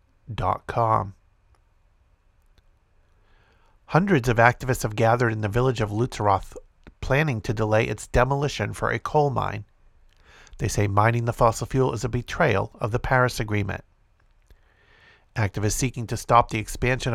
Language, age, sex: English, 50-69, male